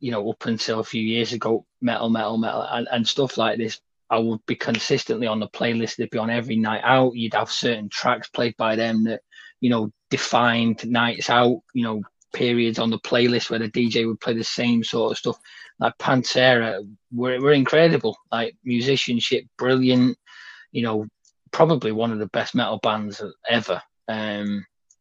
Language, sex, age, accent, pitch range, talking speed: English, male, 20-39, British, 110-125 Hz, 185 wpm